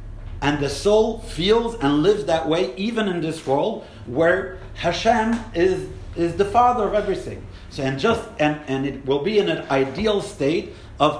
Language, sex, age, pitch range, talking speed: English, male, 50-69, 135-200 Hz, 175 wpm